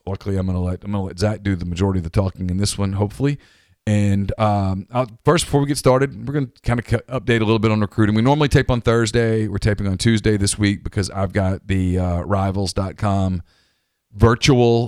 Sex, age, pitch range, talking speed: male, 40-59, 90-115 Hz, 220 wpm